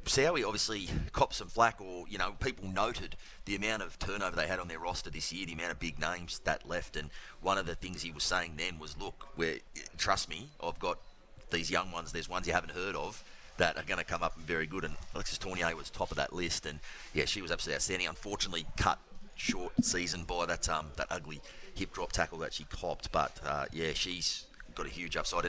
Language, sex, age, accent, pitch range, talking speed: English, male, 30-49, Australian, 80-95 Hz, 230 wpm